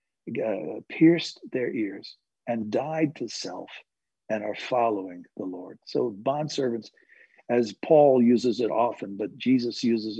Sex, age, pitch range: male, 60-79, 115-170 Hz